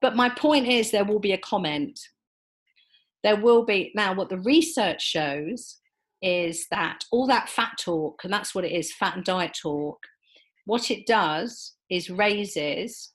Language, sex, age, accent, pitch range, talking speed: English, female, 40-59, British, 170-215 Hz, 170 wpm